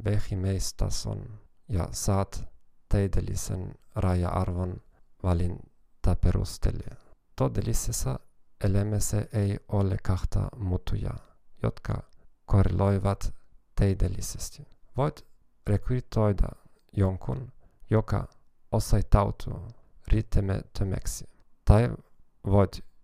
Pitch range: 95-110 Hz